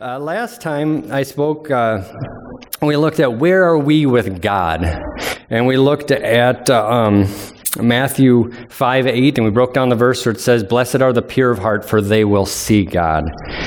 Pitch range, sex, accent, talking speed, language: 110-135 Hz, male, American, 190 wpm, English